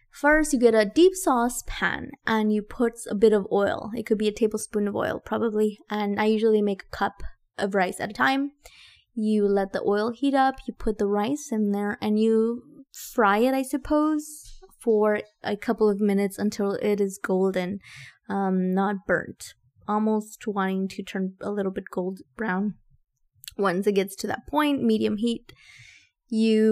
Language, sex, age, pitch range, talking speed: English, female, 20-39, 195-230 Hz, 180 wpm